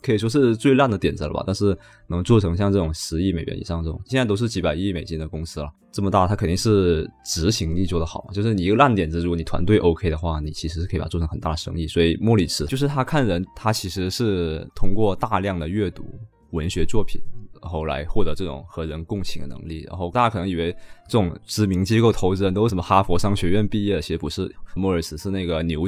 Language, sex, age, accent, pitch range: Chinese, male, 20-39, native, 80-100 Hz